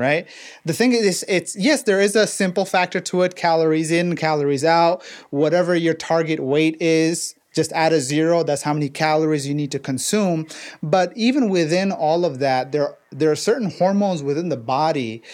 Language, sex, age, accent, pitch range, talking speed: English, male, 30-49, American, 150-180 Hz, 190 wpm